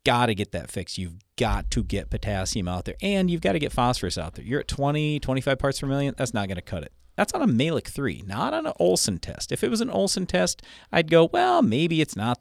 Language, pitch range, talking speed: English, 95-140 Hz, 265 wpm